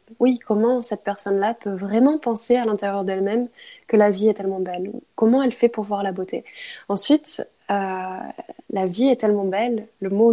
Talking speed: 185 wpm